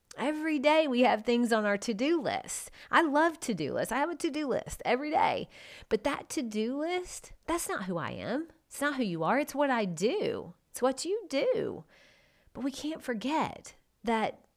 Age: 30-49